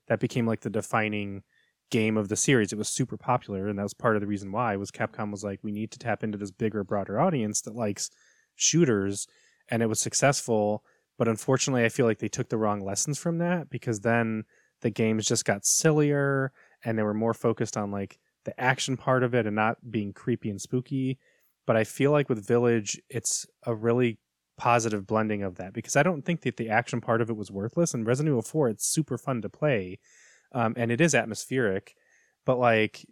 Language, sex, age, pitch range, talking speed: English, male, 20-39, 105-130 Hz, 215 wpm